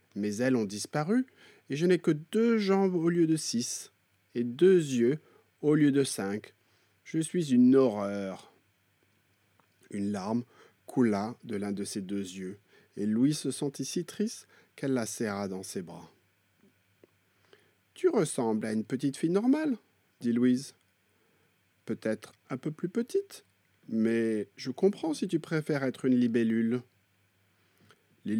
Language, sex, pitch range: English, male, 100-150 Hz